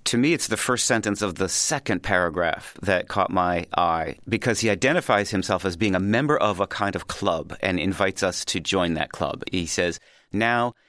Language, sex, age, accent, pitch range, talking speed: English, male, 40-59, American, 95-115 Hz, 205 wpm